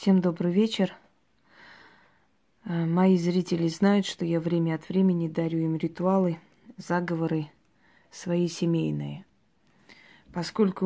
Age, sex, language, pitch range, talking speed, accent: 20-39, female, Russian, 160-185 Hz, 100 wpm, native